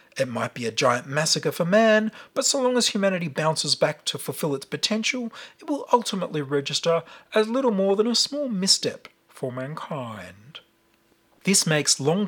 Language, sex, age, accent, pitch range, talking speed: English, male, 40-59, Australian, 140-200 Hz, 170 wpm